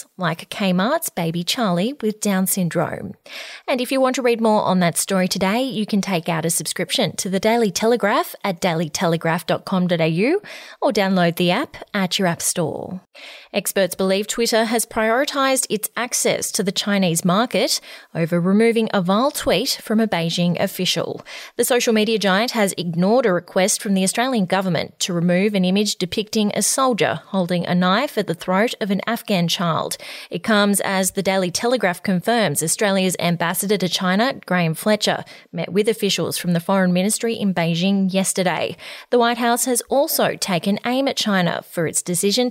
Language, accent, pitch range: English, Australian, 175-225 Hz